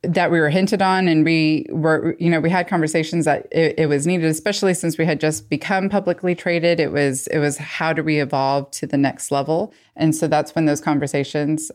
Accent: American